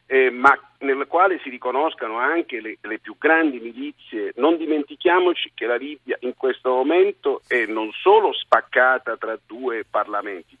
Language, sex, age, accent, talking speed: Italian, male, 50-69, native, 155 wpm